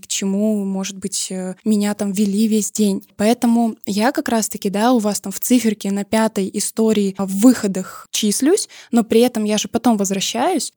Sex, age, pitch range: female, 10-29, 200-230 Hz